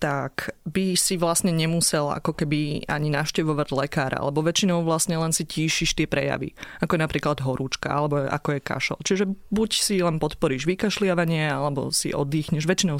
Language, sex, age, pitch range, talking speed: Slovak, female, 30-49, 145-180 Hz, 165 wpm